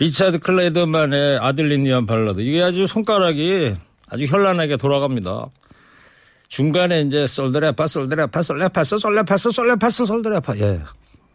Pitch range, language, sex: 125-175 Hz, Korean, male